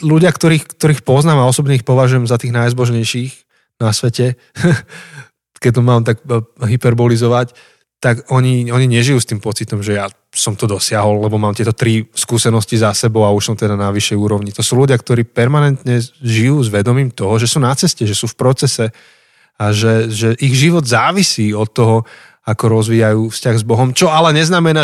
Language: Slovak